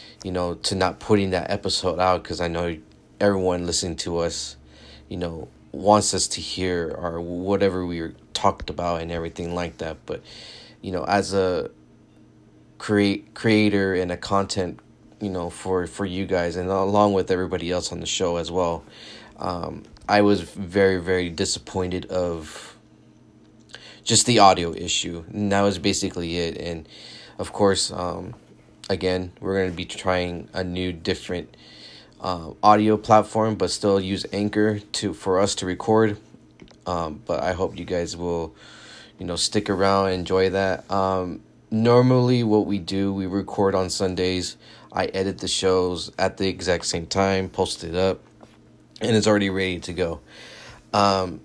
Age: 30-49